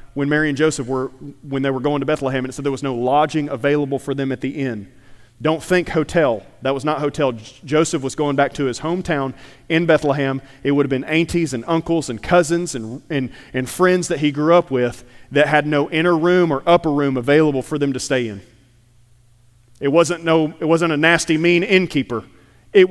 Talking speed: 215 wpm